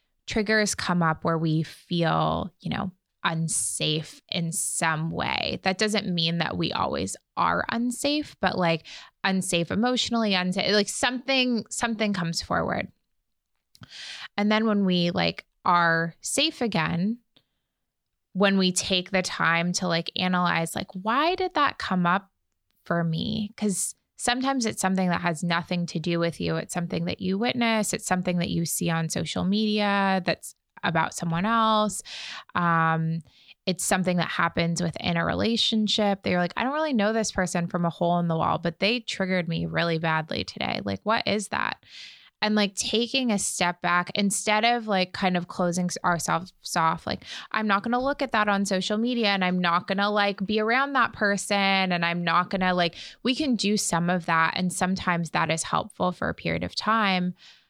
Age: 20-39